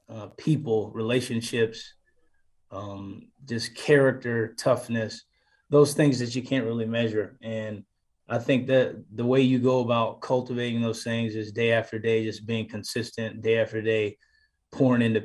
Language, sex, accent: English, male, American